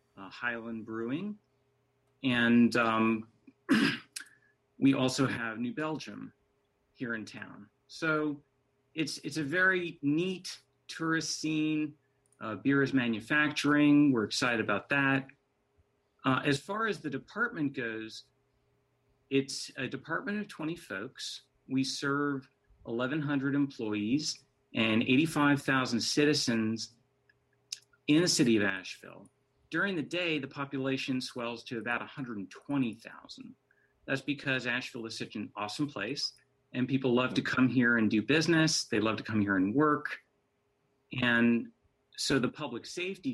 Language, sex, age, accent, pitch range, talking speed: English, male, 40-59, American, 115-145 Hz, 125 wpm